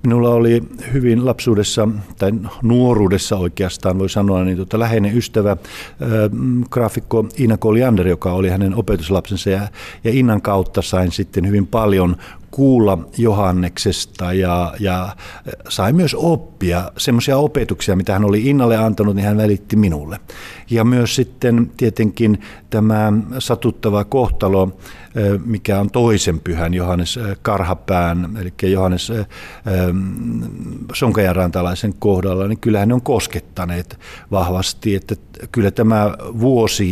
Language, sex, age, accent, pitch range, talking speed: Finnish, male, 50-69, native, 95-115 Hz, 125 wpm